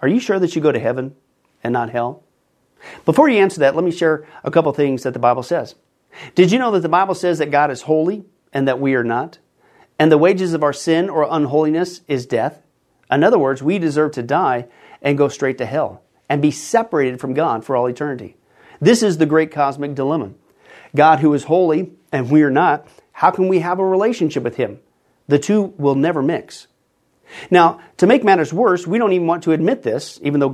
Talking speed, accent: 220 wpm, American